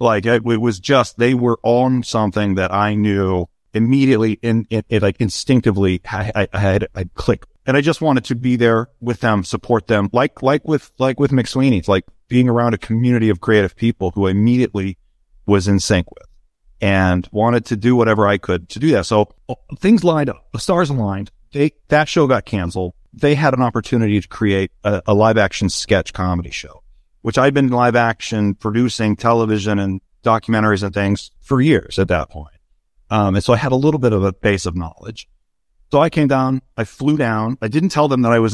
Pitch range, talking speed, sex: 95-120 Hz, 210 wpm, male